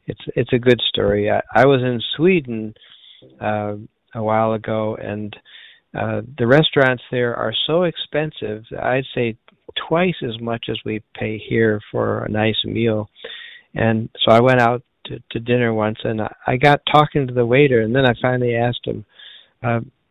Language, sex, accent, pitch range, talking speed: English, male, American, 110-130 Hz, 175 wpm